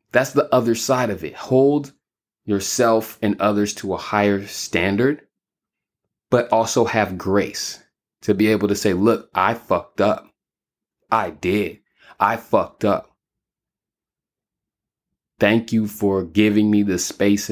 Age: 20-39